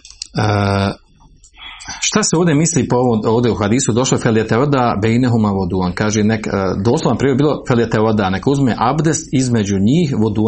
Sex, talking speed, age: male, 160 wpm, 40-59